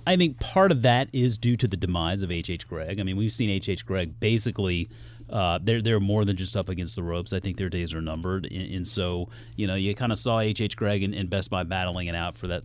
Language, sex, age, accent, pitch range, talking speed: English, male, 30-49, American, 95-120 Hz, 245 wpm